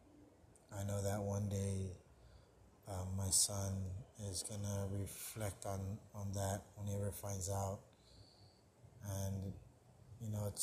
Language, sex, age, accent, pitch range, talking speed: English, male, 20-39, American, 95-105 Hz, 130 wpm